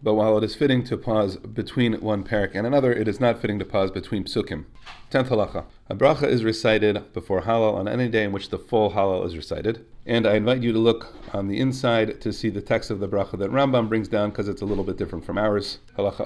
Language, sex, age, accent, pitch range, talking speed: English, male, 40-59, American, 105-120 Hz, 245 wpm